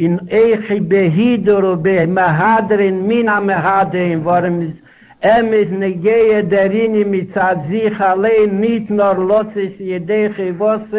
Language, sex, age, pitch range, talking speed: Hebrew, male, 60-79, 185-220 Hz, 105 wpm